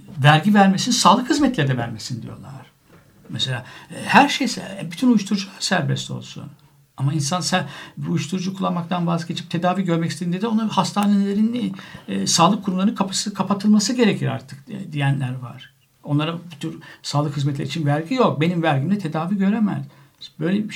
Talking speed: 145 wpm